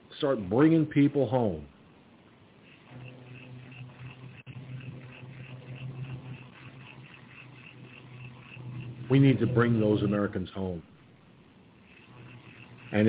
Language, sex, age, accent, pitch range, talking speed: English, male, 50-69, American, 105-125 Hz, 55 wpm